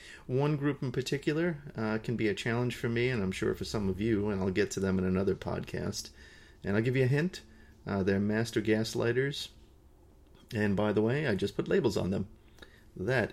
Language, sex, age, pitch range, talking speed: English, male, 30-49, 95-125 Hz, 210 wpm